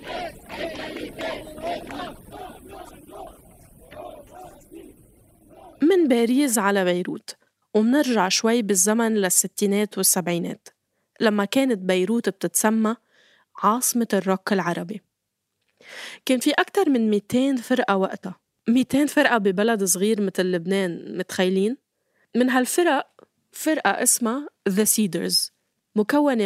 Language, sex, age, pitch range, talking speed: Arabic, female, 20-39, 190-255 Hz, 85 wpm